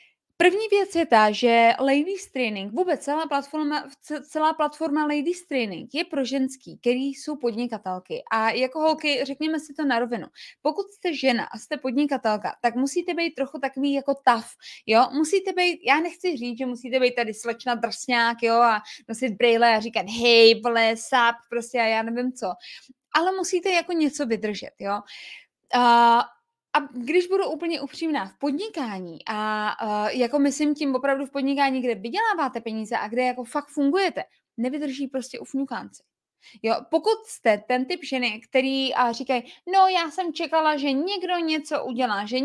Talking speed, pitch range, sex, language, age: 165 wpm, 240-315 Hz, female, Czech, 20-39